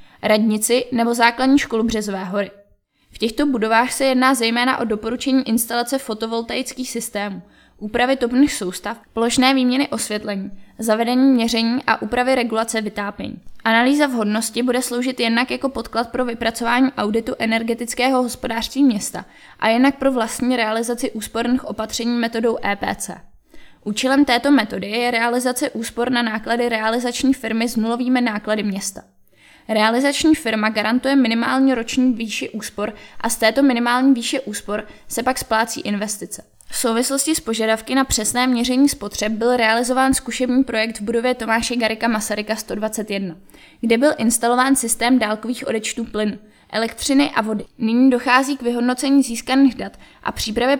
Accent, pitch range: native, 220-255 Hz